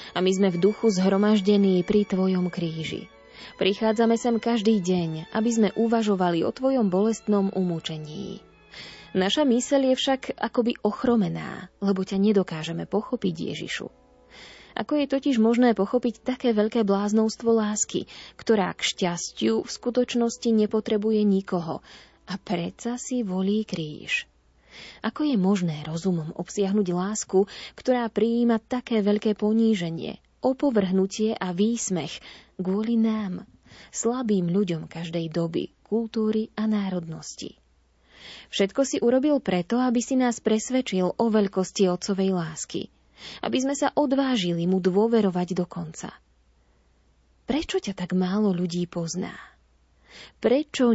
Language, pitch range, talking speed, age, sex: Slovak, 180-230 Hz, 120 wpm, 20-39, female